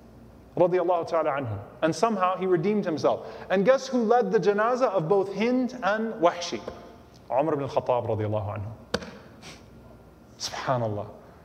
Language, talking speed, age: English, 105 wpm, 30-49